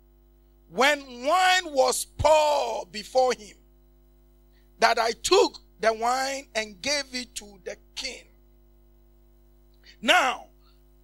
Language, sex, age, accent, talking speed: English, male, 50-69, Nigerian, 100 wpm